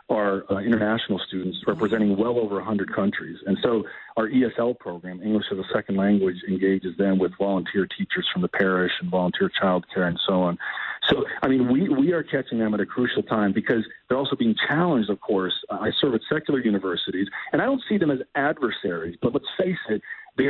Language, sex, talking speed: English, male, 200 wpm